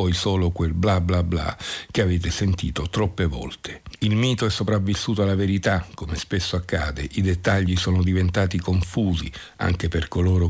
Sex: male